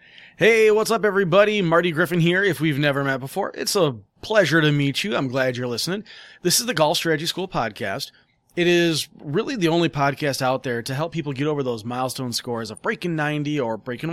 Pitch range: 135-175 Hz